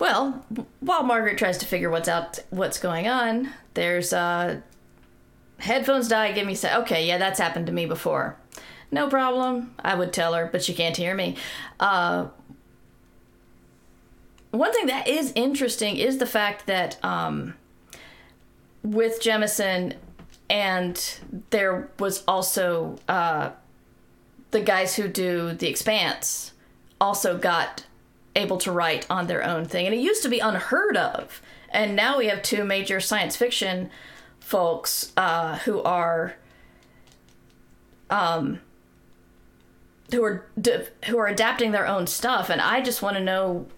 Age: 40-59